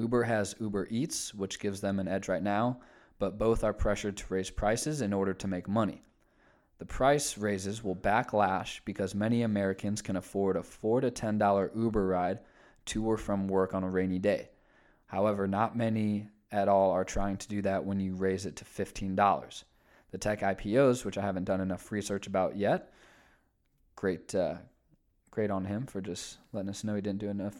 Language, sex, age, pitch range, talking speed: English, male, 20-39, 100-115 Hz, 190 wpm